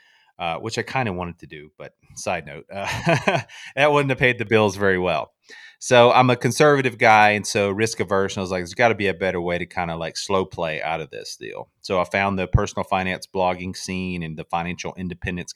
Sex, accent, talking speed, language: male, American, 235 wpm, English